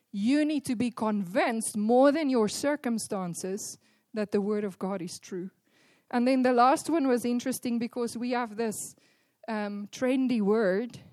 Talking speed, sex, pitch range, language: 160 wpm, female, 205-250 Hz, Finnish